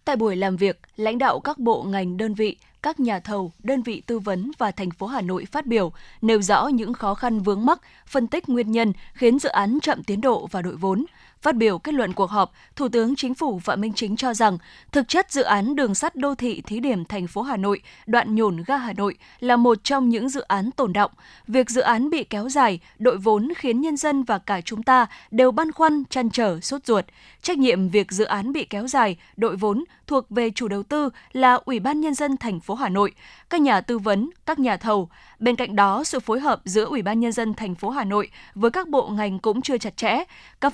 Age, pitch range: 10-29, 210-265 Hz